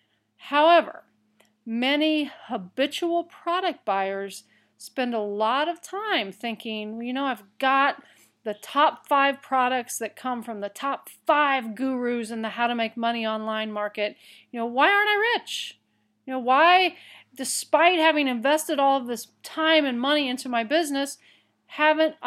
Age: 40-59